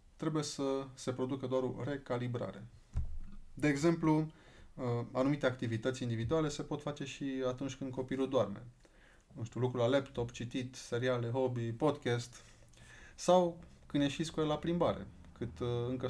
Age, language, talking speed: 20-39, Romanian, 140 wpm